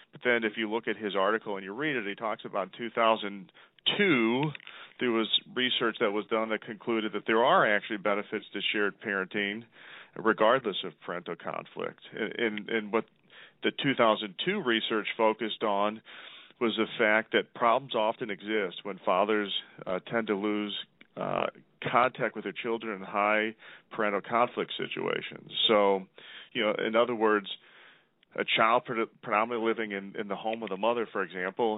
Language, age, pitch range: English, 40-59, 100-115 Hz